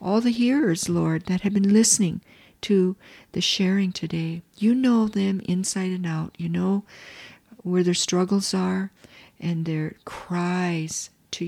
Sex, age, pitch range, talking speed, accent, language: female, 50-69, 175-215 Hz, 145 wpm, American, English